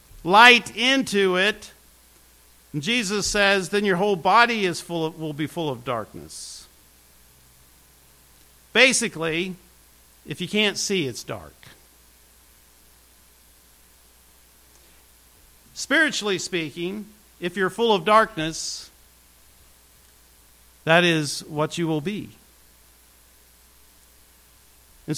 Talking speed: 95 wpm